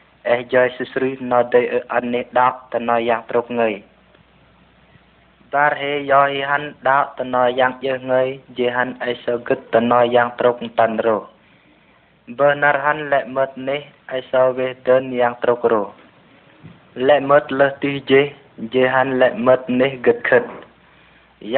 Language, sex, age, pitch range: Vietnamese, male, 20-39, 125-145 Hz